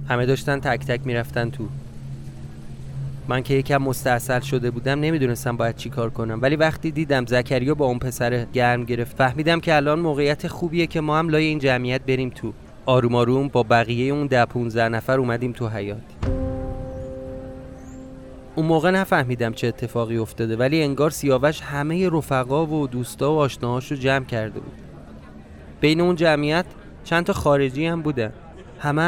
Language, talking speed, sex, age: Persian, 160 wpm, male, 30-49